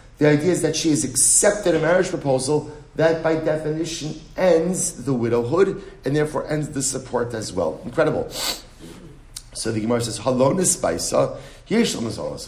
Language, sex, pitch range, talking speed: English, male, 115-145 Hz, 135 wpm